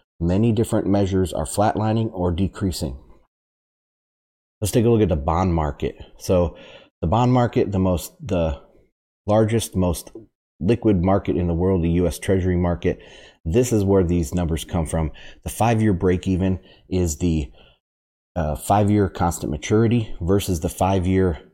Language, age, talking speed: English, 30-49, 150 wpm